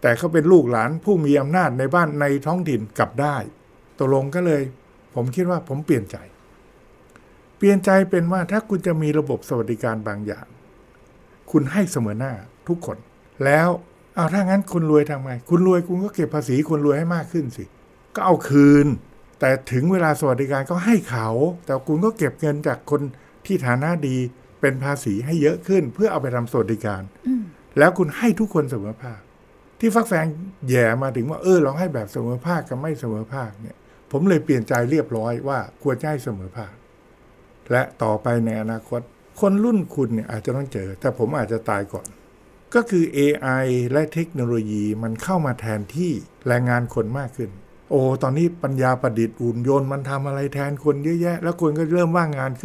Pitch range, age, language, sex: 120-170 Hz, 60-79, Thai, male